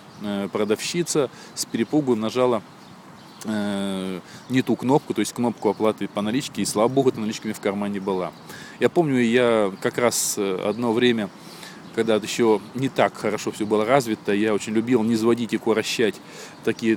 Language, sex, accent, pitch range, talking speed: Russian, male, native, 105-125 Hz, 165 wpm